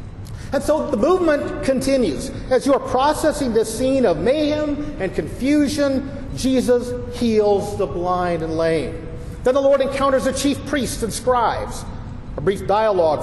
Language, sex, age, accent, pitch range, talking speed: English, male, 50-69, American, 195-270 Hz, 150 wpm